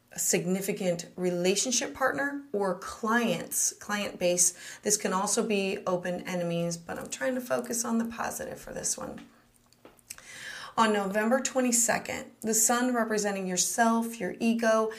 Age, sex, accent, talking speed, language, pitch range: 30-49, female, American, 135 wpm, English, 180-240 Hz